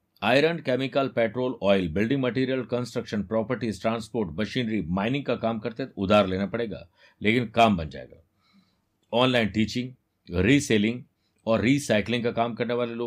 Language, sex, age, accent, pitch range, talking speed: Hindi, male, 50-69, native, 100-130 Hz, 95 wpm